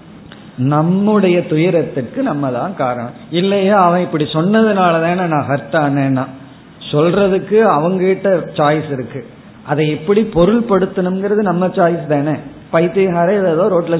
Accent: native